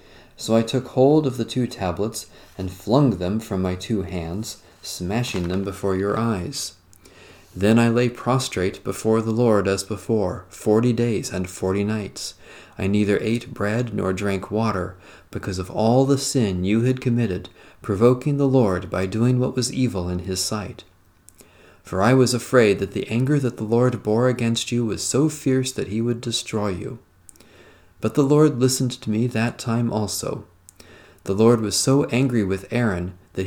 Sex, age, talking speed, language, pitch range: male, 40-59, 175 wpm, English, 95-120 Hz